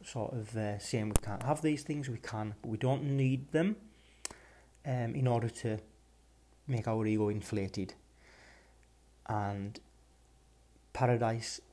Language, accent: English, British